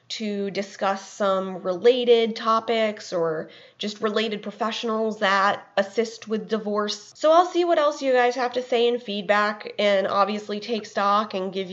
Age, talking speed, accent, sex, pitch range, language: 20-39, 160 wpm, American, female, 200-235 Hz, English